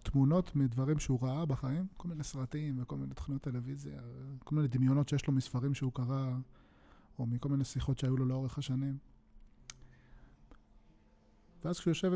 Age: 20-39